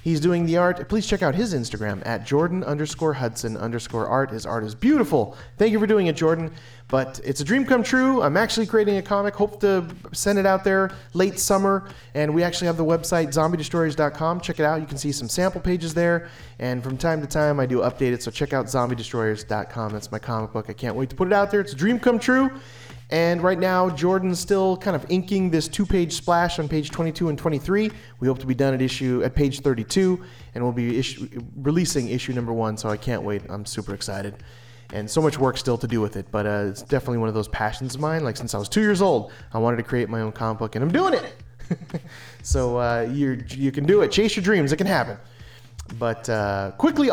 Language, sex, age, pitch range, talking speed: English, male, 30-49, 120-190 Hz, 235 wpm